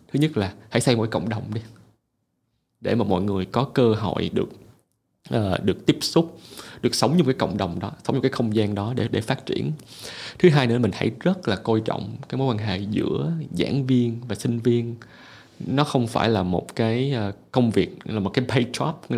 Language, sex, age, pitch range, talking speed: Vietnamese, male, 20-39, 110-135 Hz, 220 wpm